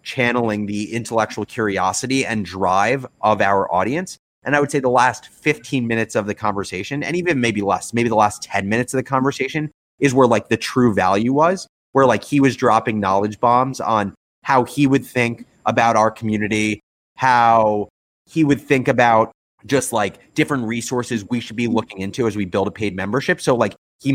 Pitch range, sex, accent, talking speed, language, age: 105-125 Hz, male, American, 190 wpm, English, 30-49